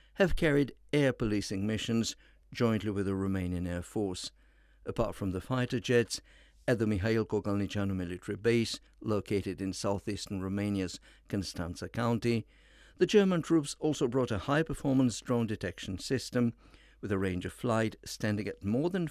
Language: English